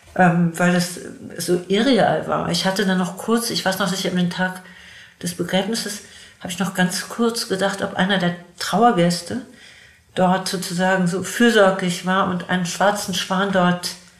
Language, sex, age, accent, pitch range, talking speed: German, female, 60-79, German, 180-195 Hz, 165 wpm